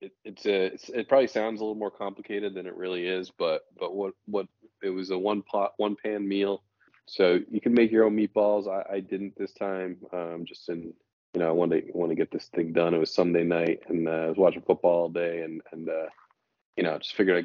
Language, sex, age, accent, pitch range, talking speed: English, male, 20-39, American, 85-100 Hz, 250 wpm